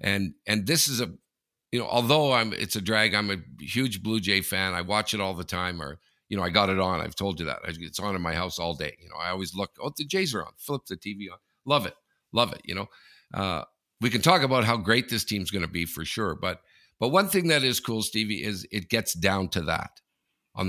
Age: 50-69